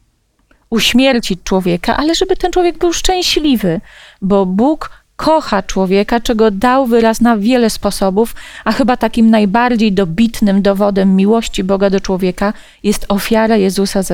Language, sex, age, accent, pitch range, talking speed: Polish, female, 30-49, native, 200-260 Hz, 130 wpm